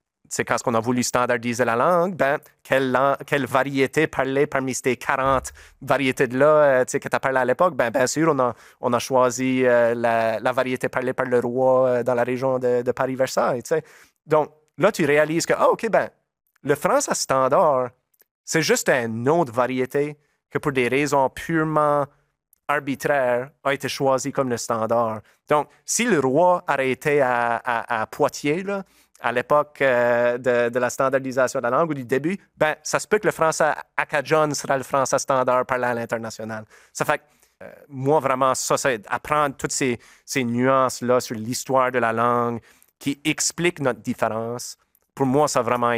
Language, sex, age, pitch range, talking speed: French, male, 30-49, 120-145 Hz, 185 wpm